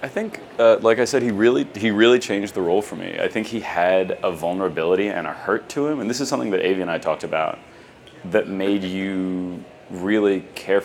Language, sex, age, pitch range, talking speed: English, male, 30-49, 85-95 Hz, 225 wpm